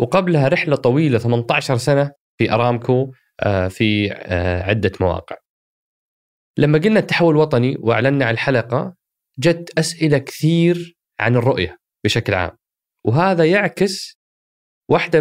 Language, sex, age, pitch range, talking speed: Arabic, male, 20-39, 110-160 Hz, 105 wpm